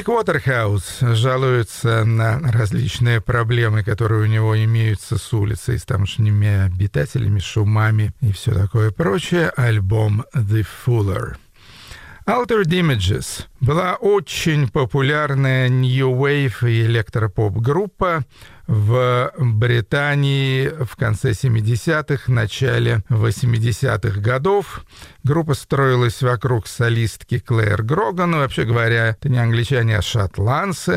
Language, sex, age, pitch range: Russian, male, 50-69, 110-140 Hz